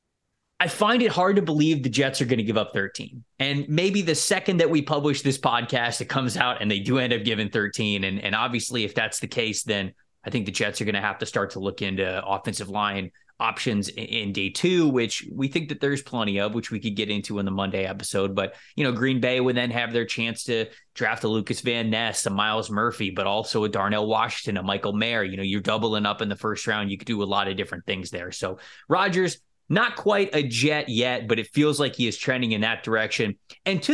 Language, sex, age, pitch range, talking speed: English, male, 20-39, 105-150 Hz, 250 wpm